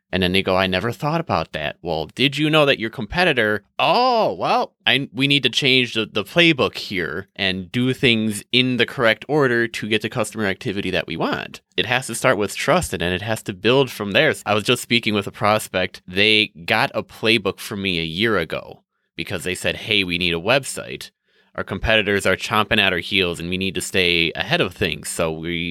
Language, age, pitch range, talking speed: English, 20-39, 95-125 Hz, 225 wpm